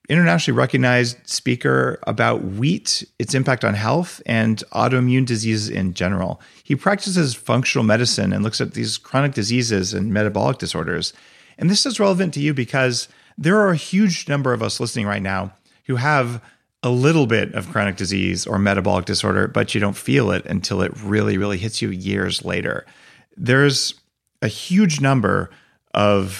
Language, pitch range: English, 100-130 Hz